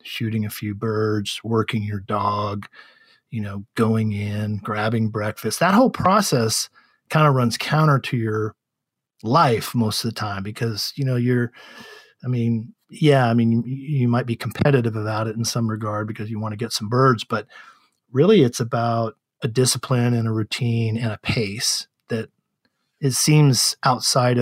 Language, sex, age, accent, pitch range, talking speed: English, male, 40-59, American, 110-130 Hz, 165 wpm